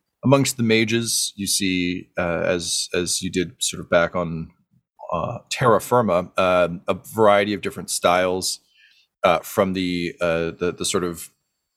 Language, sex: English, male